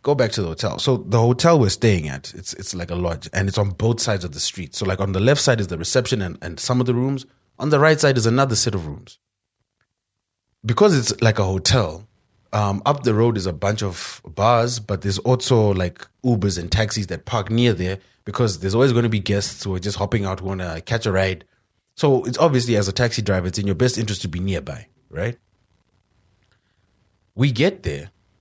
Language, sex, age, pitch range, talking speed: English, male, 20-39, 95-120 Hz, 230 wpm